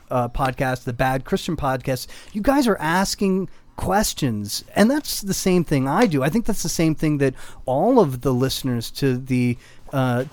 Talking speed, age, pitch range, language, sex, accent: 185 wpm, 30-49, 130-175 Hz, English, male, American